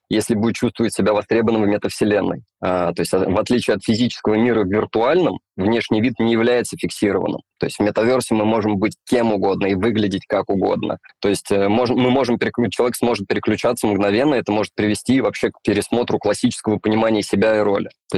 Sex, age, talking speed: male, 20-39, 170 wpm